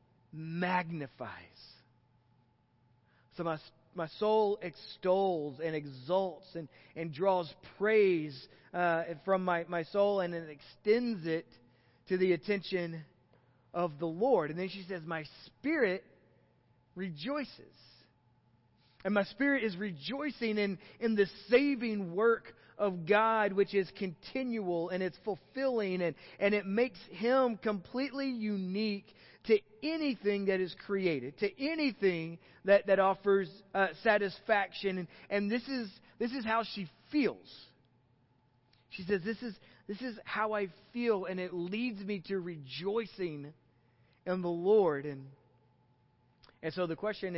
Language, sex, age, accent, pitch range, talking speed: English, male, 30-49, American, 140-200 Hz, 130 wpm